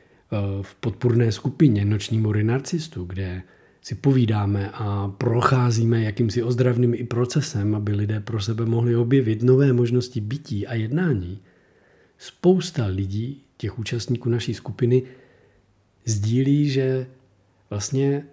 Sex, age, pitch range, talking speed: male, 40-59, 105-140 Hz, 115 wpm